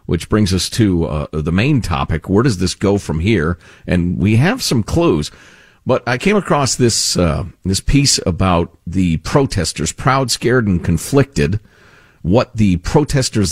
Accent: American